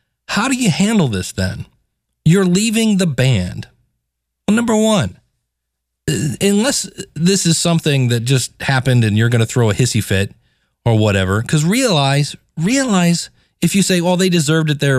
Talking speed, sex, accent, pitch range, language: 165 wpm, male, American, 120-175 Hz, English